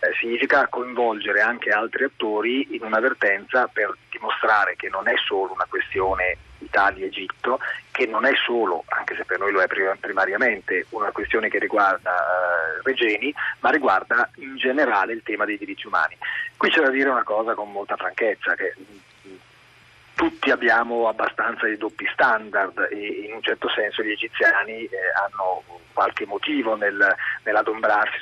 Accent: native